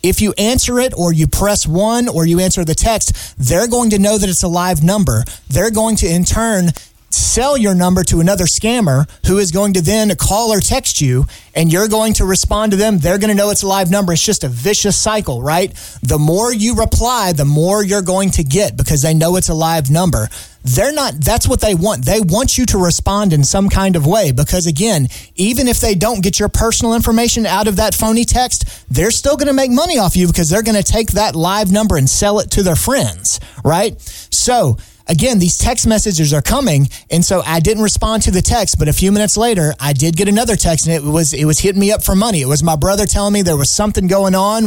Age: 30-49